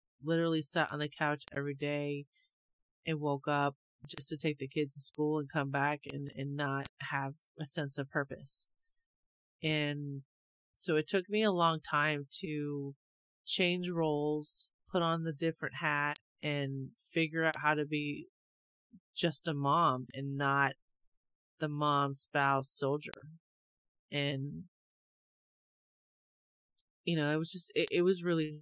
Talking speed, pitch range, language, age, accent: 145 wpm, 140-160 Hz, English, 30-49, American